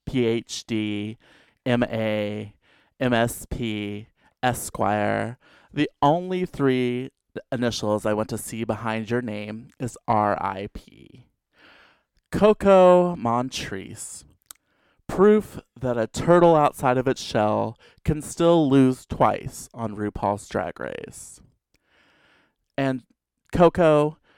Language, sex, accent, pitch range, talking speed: English, male, American, 110-150 Hz, 90 wpm